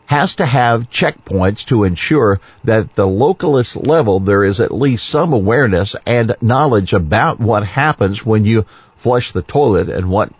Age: 50-69